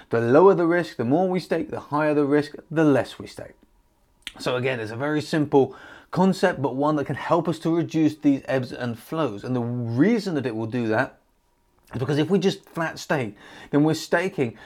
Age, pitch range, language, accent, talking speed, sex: 30-49, 130-160 Hz, English, British, 215 wpm, male